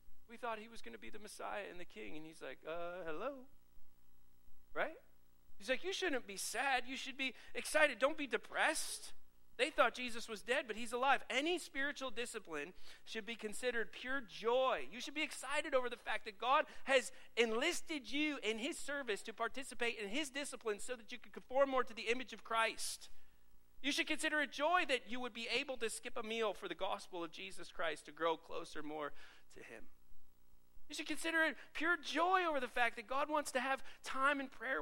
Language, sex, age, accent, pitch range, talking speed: English, male, 40-59, American, 175-270 Hz, 210 wpm